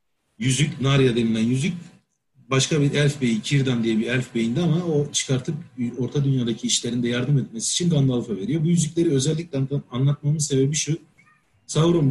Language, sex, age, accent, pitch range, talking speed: Turkish, male, 40-59, native, 125-150 Hz, 155 wpm